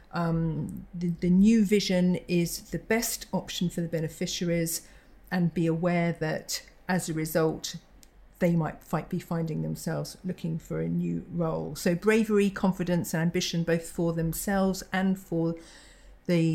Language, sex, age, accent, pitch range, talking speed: English, female, 50-69, British, 165-200 Hz, 145 wpm